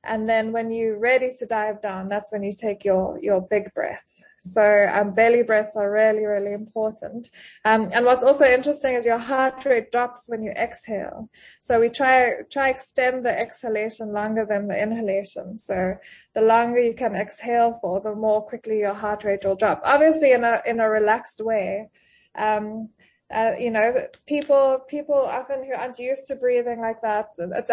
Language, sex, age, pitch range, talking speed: English, female, 20-39, 210-245 Hz, 185 wpm